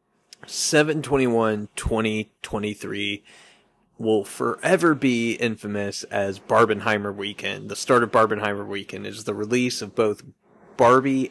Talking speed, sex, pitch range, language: 105 wpm, male, 110-135 Hz, English